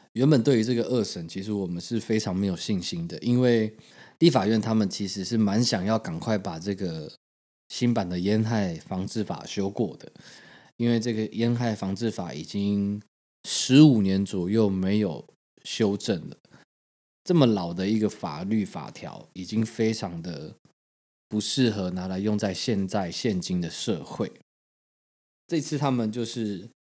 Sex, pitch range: male, 95-115 Hz